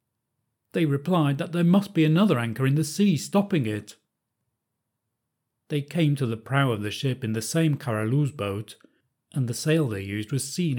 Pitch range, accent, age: 120-160 Hz, British, 40-59